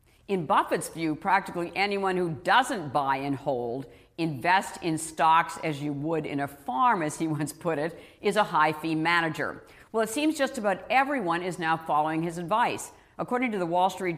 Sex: female